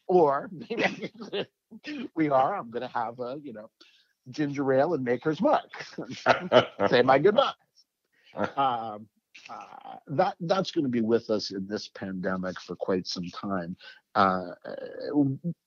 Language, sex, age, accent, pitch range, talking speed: English, male, 50-69, American, 100-145 Hz, 135 wpm